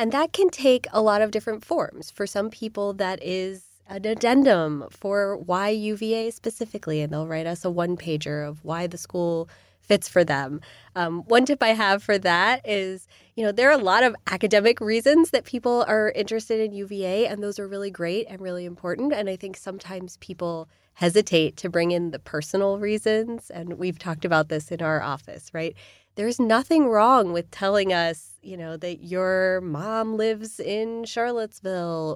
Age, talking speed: 20-39, 185 wpm